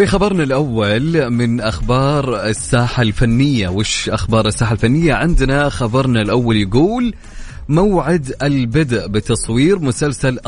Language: English